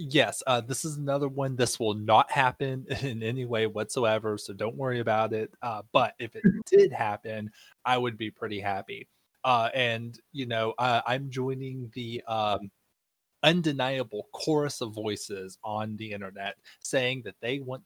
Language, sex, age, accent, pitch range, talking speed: English, male, 20-39, American, 105-130 Hz, 170 wpm